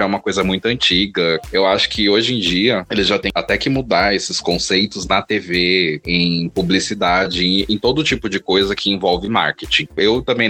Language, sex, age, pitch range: Portuguese, male, 20-39, 90-105 Hz